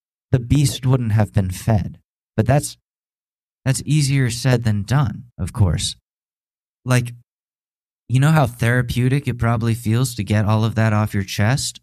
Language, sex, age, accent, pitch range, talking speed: English, male, 20-39, American, 100-120 Hz, 155 wpm